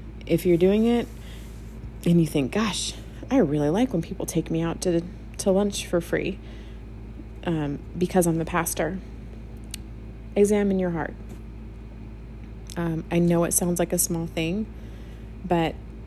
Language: English